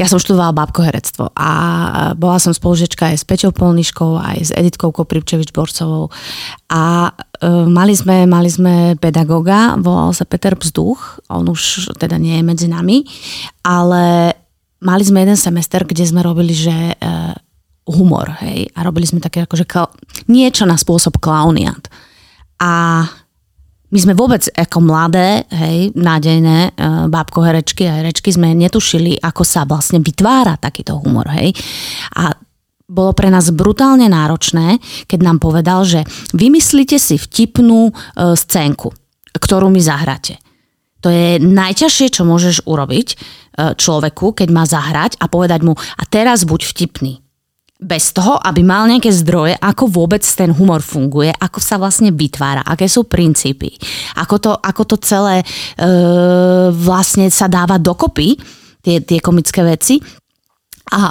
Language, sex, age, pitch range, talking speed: Slovak, female, 20-39, 165-190 Hz, 140 wpm